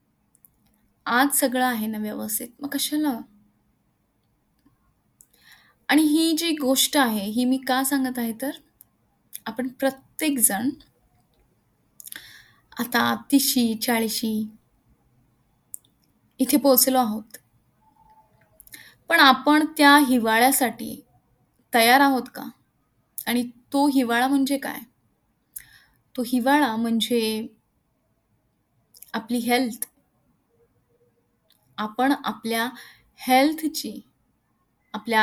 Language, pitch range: Marathi, 225-270 Hz